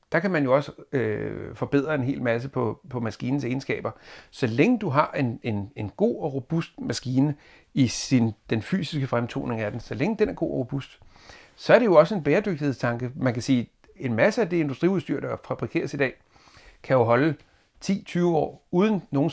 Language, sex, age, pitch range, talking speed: Danish, male, 60-79, 125-155 Hz, 205 wpm